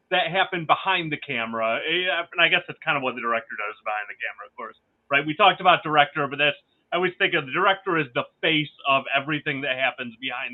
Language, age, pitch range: English, 30-49, 140-190 Hz